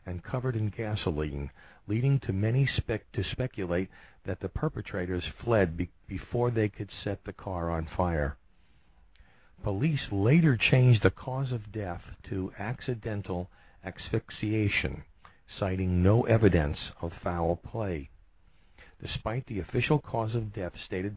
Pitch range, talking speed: 90-115 Hz, 125 wpm